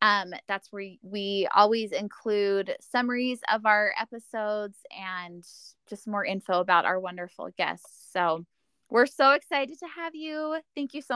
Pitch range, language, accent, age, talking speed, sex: 200-245 Hz, English, American, 20-39, 150 wpm, female